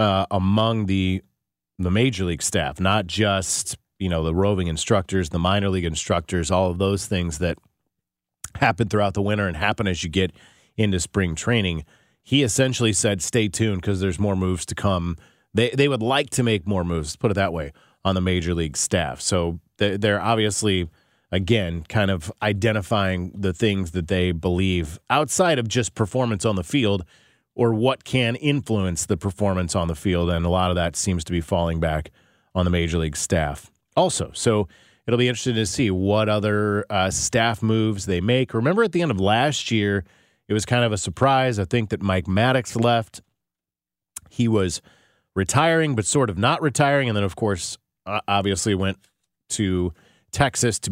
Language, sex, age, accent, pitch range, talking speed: English, male, 30-49, American, 90-115 Hz, 185 wpm